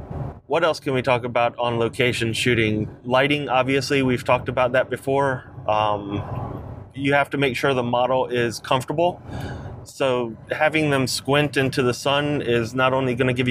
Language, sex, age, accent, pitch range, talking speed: English, male, 30-49, American, 120-135 Hz, 175 wpm